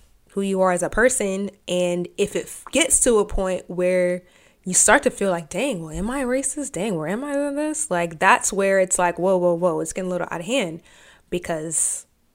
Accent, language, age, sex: American, English, 20-39, female